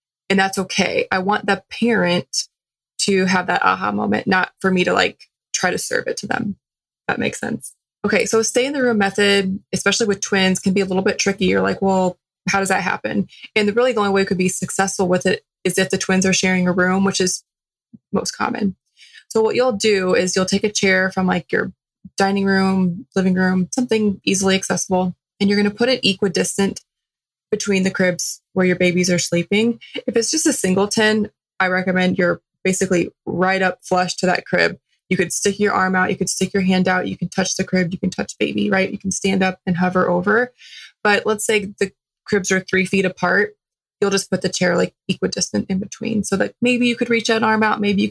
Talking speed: 225 wpm